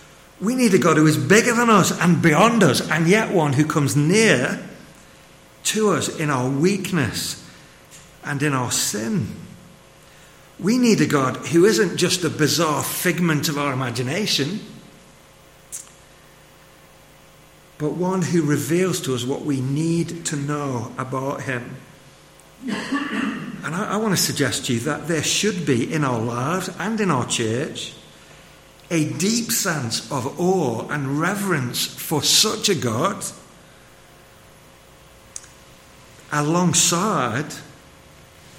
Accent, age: British, 50-69